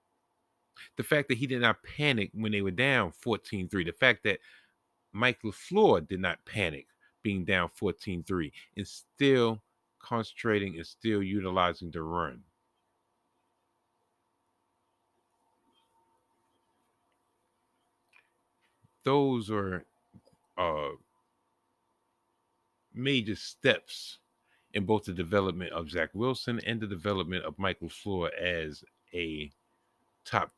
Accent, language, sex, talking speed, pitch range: American, English, male, 100 wpm, 85-110 Hz